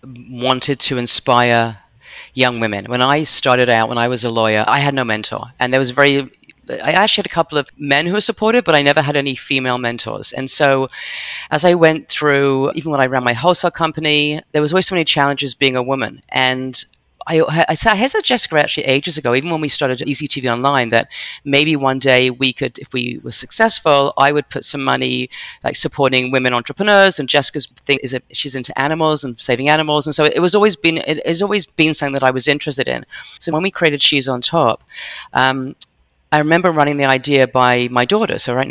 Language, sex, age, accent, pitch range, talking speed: English, female, 40-59, British, 125-160 Hz, 215 wpm